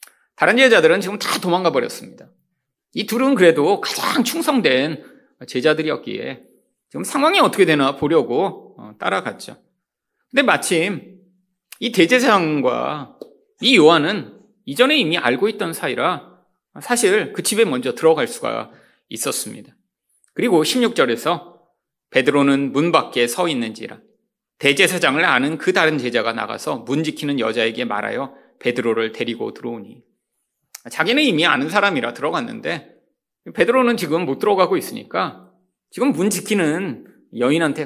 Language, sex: Korean, male